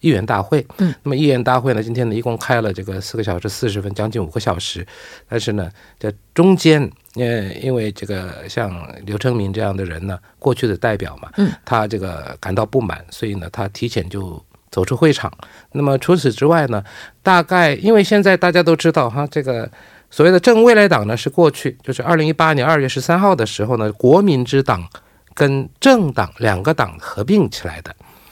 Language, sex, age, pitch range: Korean, male, 50-69, 105-150 Hz